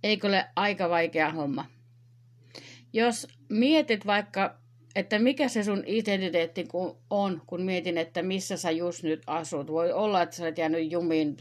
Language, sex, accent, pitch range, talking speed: Finnish, female, native, 125-190 Hz, 155 wpm